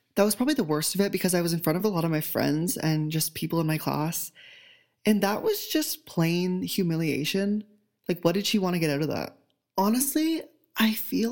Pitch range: 155-195 Hz